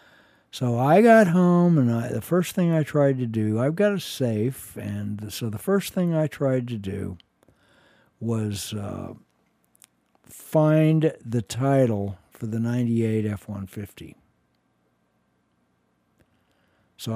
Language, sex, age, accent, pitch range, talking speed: English, male, 60-79, American, 105-130 Hz, 125 wpm